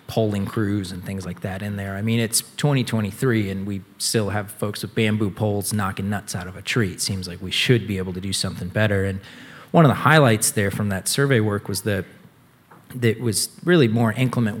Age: 30-49